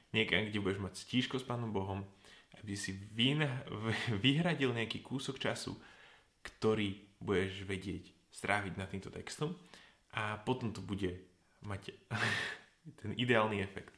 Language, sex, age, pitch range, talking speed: Slovak, male, 10-29, 100-120 Hz, 125 wpm